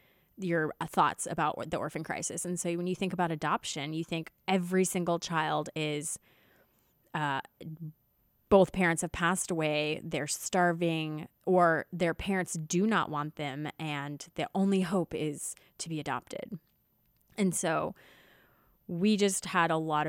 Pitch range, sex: 155-185 Hz, female